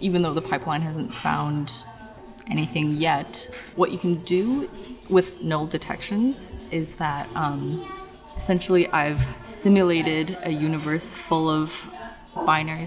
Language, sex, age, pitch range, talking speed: English, female, 20-39, 145-180 Hz, 120 wpm